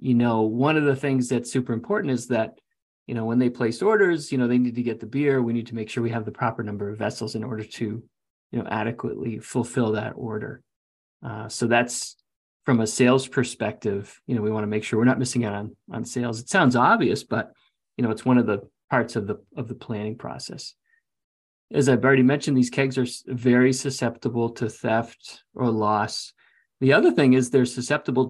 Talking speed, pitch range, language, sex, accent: 220 wpm, 115-135 Hz, English, male, American